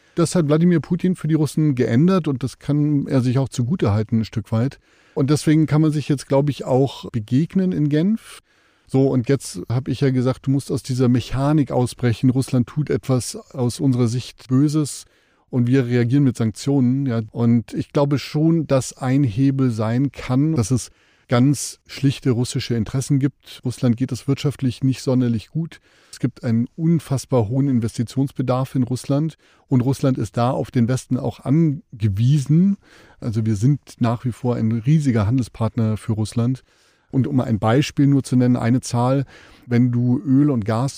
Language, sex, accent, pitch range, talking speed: German, male, German, 120-140 Hz, 180 wpm